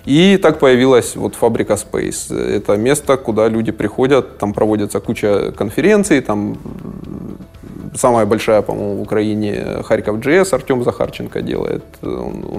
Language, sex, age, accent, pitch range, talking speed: Russian, male, 20-39, native, 110-145 Hz, 135 wpm